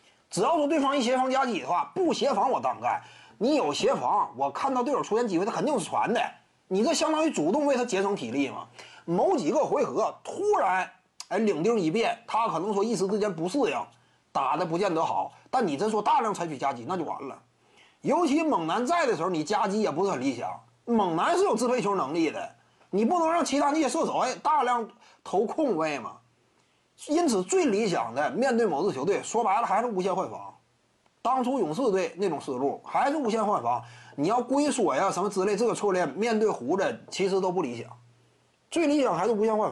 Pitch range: 195-295 Hz